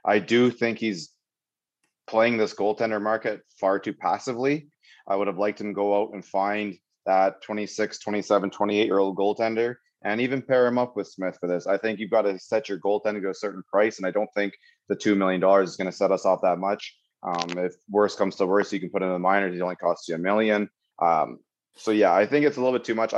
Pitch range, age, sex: 95-110 Hz, 30-49, male